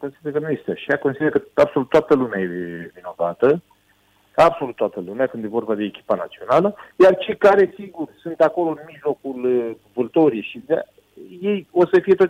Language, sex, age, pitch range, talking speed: Romanian, male, 50-69, 115-170 Hz, 170 wpm